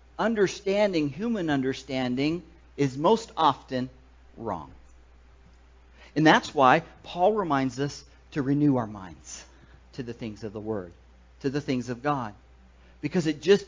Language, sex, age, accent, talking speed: English, male, 50-69, American, 135 wpm